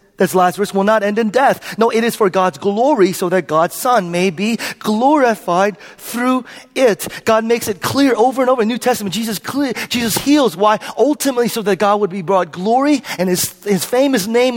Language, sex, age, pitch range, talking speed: English, male, 30-49, 190-250 Hz, 205 wpm